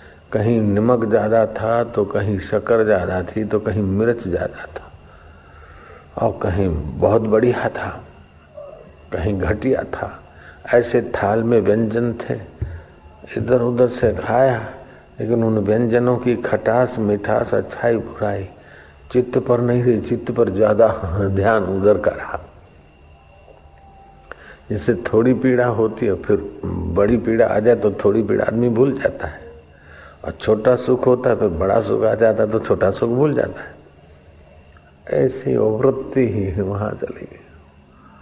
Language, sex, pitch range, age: Hindi, male, 80-115 Hz, 50-69